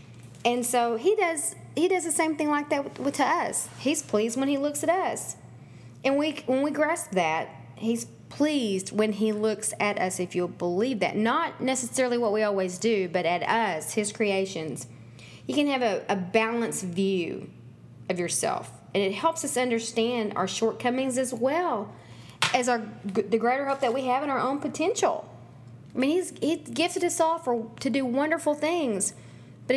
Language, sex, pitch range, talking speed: English, female, 195-280 Hz, 185 wpm